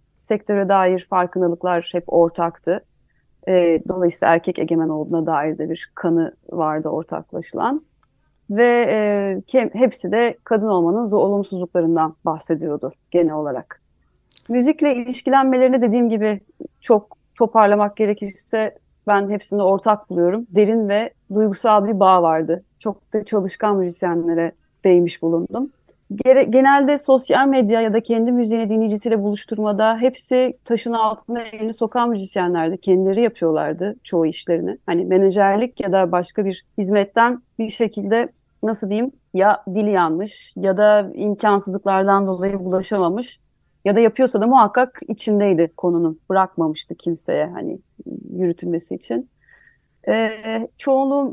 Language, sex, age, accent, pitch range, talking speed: Turkish, female, 30-49, native, 180-230 Hz, 115 wpm